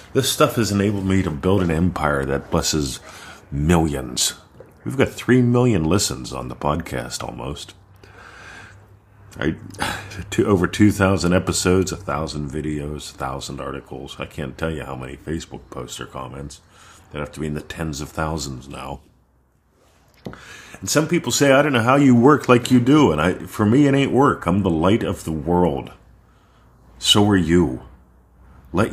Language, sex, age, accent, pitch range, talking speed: English, male, 50-69, American, 75-105 Hz, 165 wpm